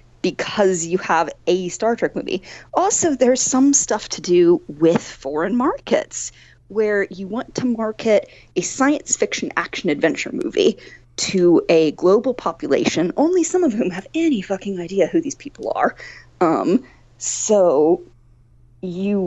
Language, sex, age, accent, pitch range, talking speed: English, female, 30-49, American, 170-265 Hz, 145 wpm